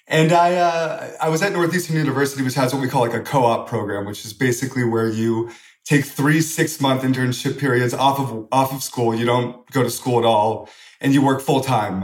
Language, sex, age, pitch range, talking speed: English, male, 30-49, 120-140 Hz, 225 wpm